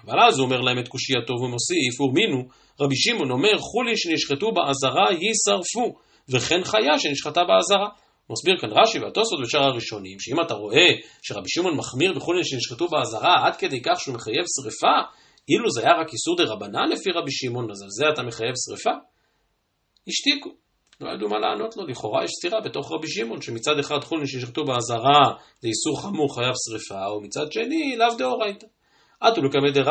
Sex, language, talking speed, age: male, Hebrew, 145 wpm, 40-59